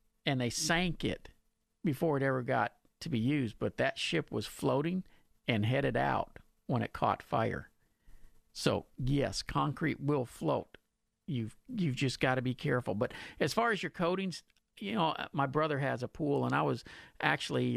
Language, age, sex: English, 50-69, male